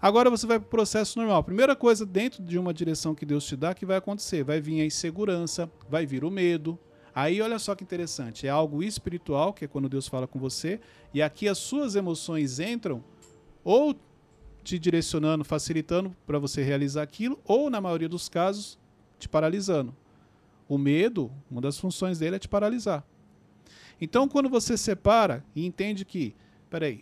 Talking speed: 180 wpm